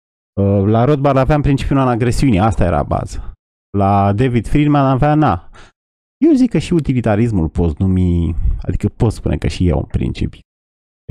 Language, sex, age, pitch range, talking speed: Romanian, male, 30-49, 85-125 Hz, 155 wpm